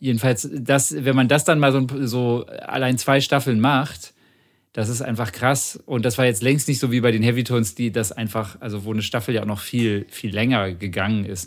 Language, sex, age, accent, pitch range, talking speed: German, male, 40-59, German, 105-125 Hz, 230 wpm